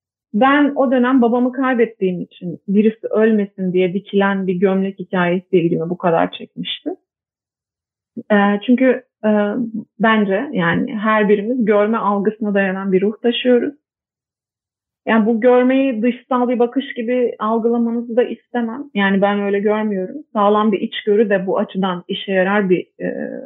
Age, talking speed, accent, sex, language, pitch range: 30-49, 135 wpm, native, female, Turkish, 195-245 Hz